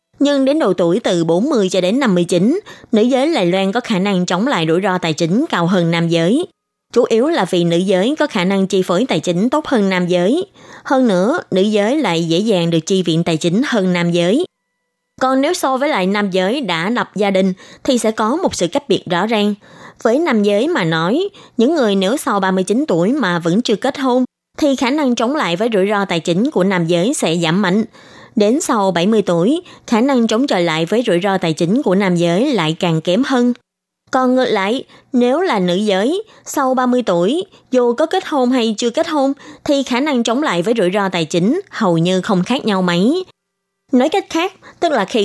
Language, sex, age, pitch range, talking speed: Vietnamese, female, 20-39, 185-265 Hz, 225 wpm